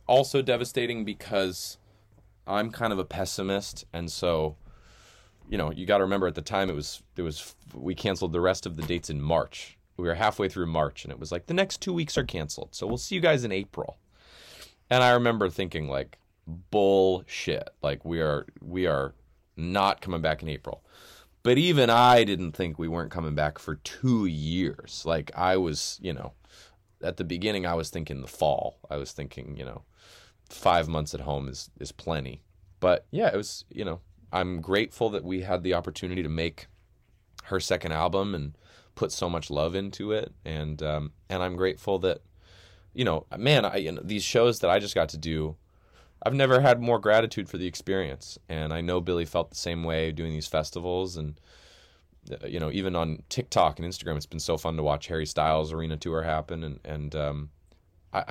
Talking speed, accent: 200 wpm, American